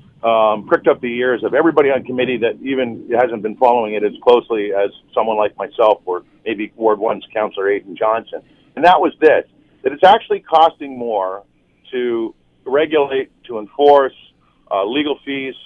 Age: 50-69